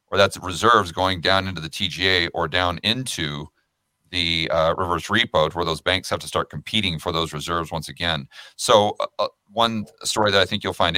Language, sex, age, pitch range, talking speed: English, male, 40-59, 85-100 Hz, 195 wpm